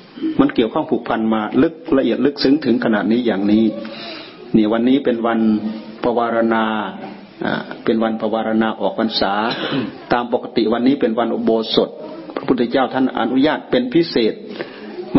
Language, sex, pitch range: Thai, male, 115-160 Hz